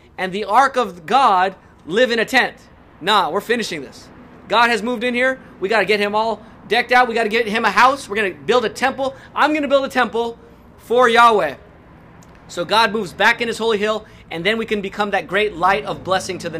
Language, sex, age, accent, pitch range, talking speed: English, male, 30-49, American, 185-225 Hz, 240 wpm